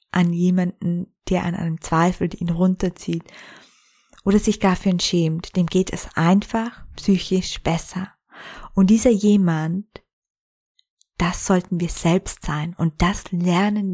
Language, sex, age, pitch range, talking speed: German, female, 20-39, 170-195 Hz, 135 wpm